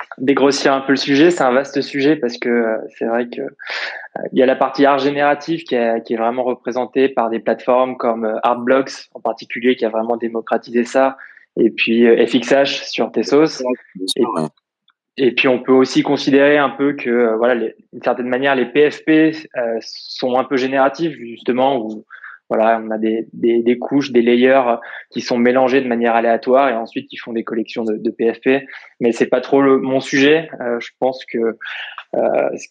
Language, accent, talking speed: French, French, 185 wpm